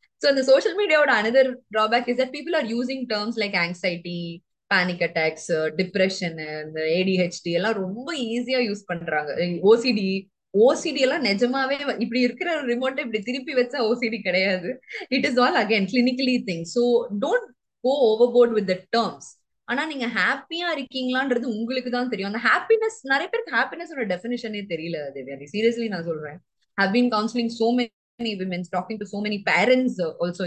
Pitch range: 190-255 Hz